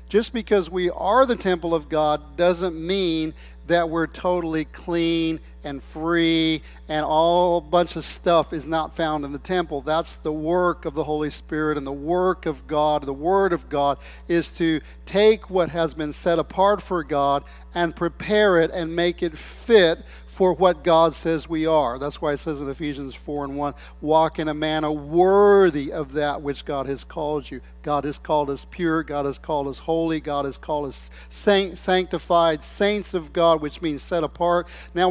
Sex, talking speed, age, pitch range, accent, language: male, 190 wpm, 50-69, 140-175 Hz, American, English